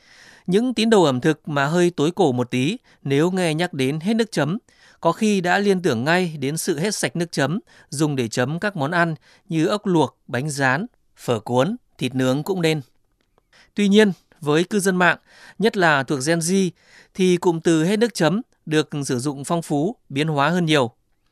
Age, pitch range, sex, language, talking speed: 20-39, 140-185 Hz, male, Vietnamese, 205 wpm